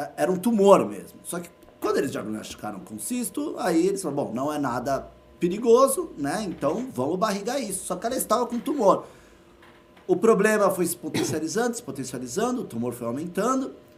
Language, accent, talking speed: Portuguese, Brazilian, 175 wpm